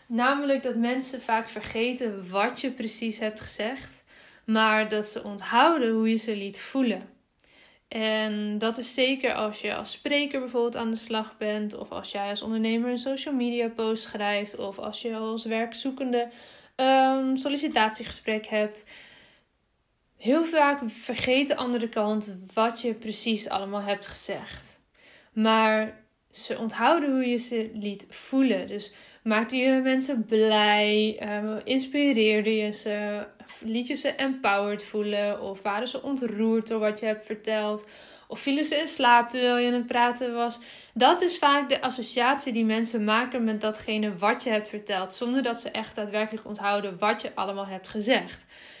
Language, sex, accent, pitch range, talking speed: Dutch, female, Dutch, 215-255 Hz, 160 wpm